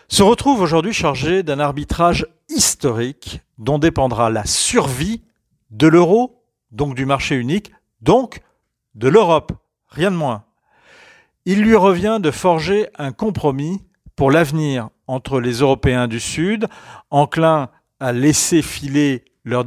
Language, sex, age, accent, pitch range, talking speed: French, male, 50-69, French, 125-170 Hz, 130 wpm